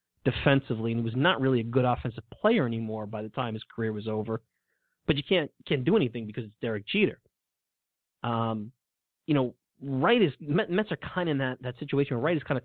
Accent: American